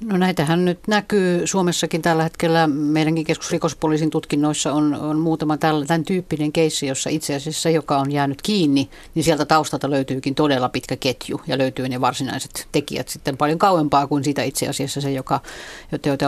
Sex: female